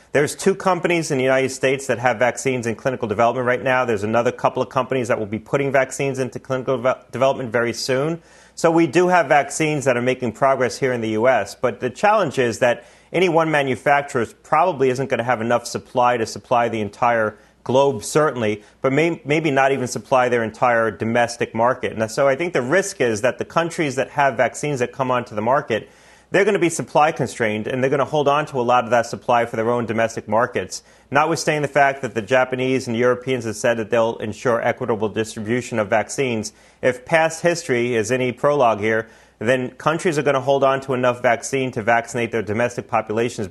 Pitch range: 115-140 Hz